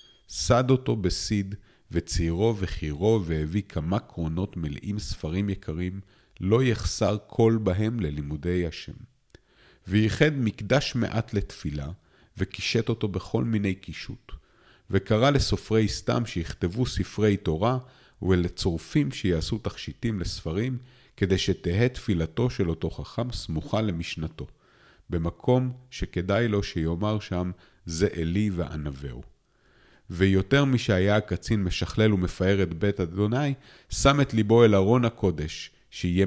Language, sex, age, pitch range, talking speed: Hebrew, male, 50-69, 85-110 Hz, 110 wpm